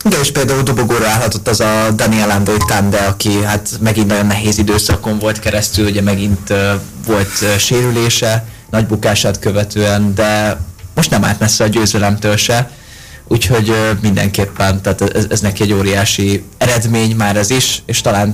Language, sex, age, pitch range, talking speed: Hungarian, male, 20-39, 105-115 Hz, 165 wpm